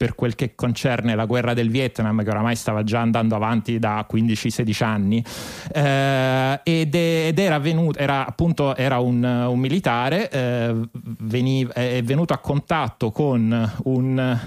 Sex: male